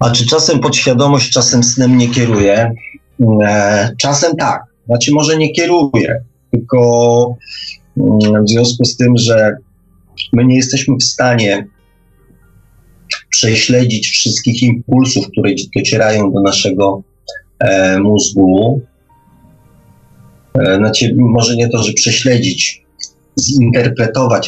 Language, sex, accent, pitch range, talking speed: Polish, male, native, 95-120 Hz, 105 wpm